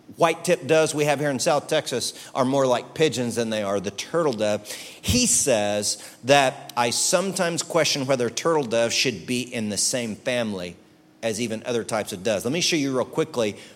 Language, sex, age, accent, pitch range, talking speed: English, male, 40-59, American, 110-145 Hz, 195 wpm